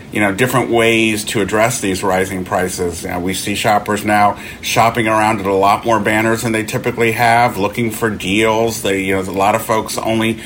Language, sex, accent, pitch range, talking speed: English, male, American, 100-115 Hz, 210 wpm